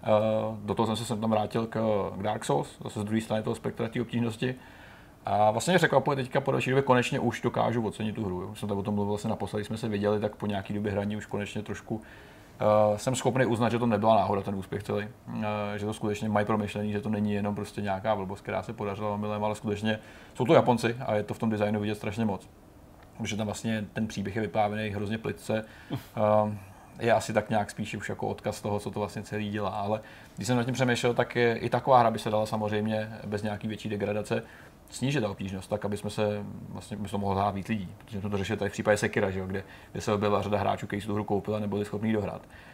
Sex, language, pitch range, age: male, Czech, 105-120 Hz, 30-49